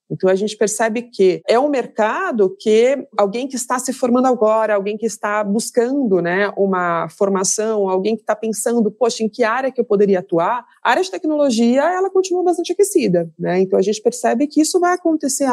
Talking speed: 195 wpm